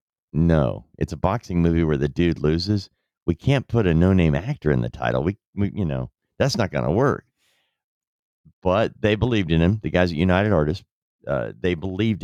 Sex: male